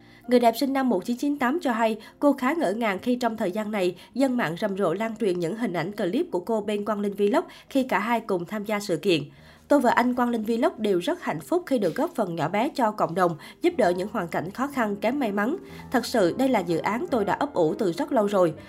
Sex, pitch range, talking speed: female, 195-255 Hz, 265 wpm